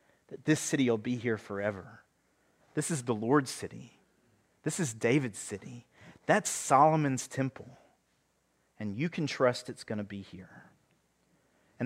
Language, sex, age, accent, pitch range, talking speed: English, male, 40-59, American, 120-155 Hz, 145 wpm